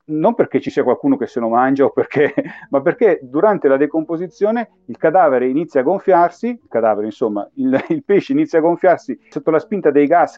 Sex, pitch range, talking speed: male, 120-175 Hz, 190 wpm